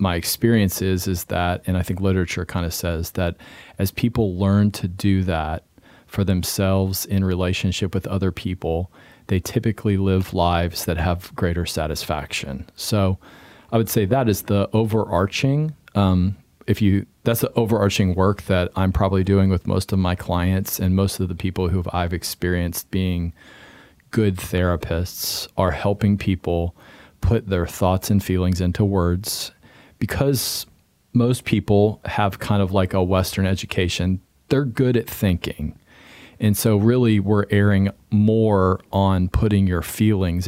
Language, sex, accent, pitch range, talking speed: English, male, American, 90-105 Hz, 155 wpm